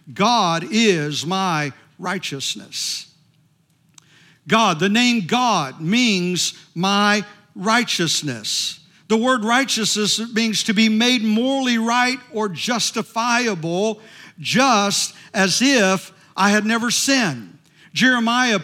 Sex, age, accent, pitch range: male, 50-69, American, 180-245 Hz